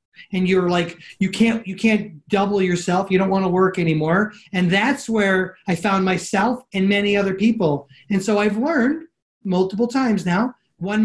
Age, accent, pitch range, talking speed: 30-49, American, 180-215 Hz, 180 wpm